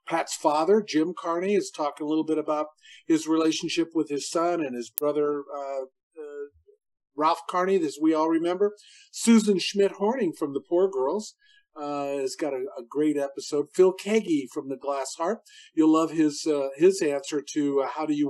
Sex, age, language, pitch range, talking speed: male, 50-69, English, 145-210 Hz, 185 wpm